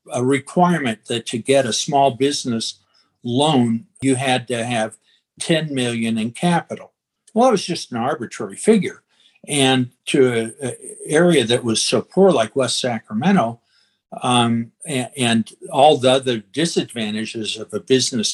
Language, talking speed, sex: English, 145 wpm, male